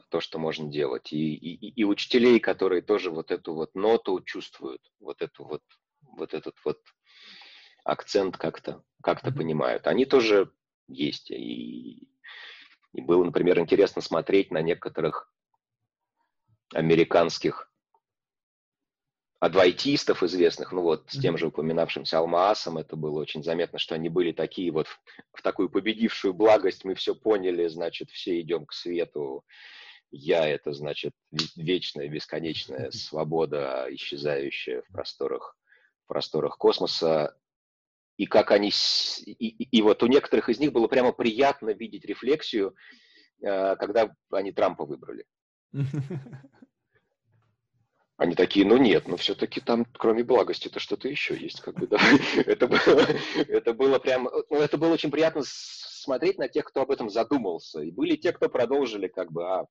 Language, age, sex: Russian, 30-49, male